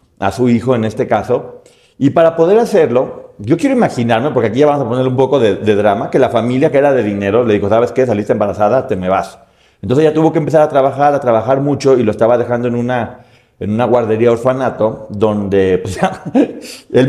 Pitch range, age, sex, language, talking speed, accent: 105-140 Hz, 40-59, male, Spanish, 220 wpm, Mexican